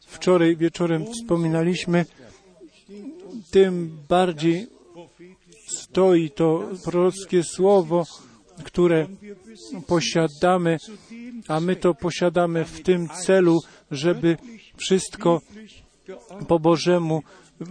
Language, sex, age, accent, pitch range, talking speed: Polish, male, 50-69, native, 165-190 Hz, 75 wpm